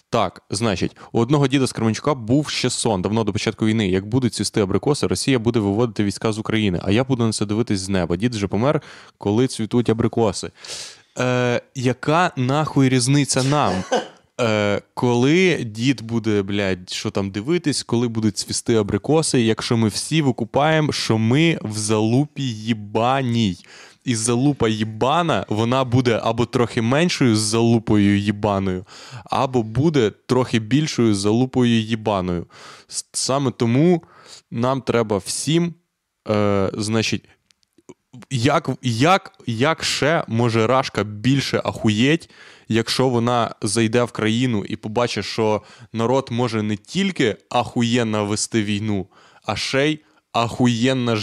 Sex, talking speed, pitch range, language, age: male, 135 wpm, 110-130 Hz, Ukrainian, 20-39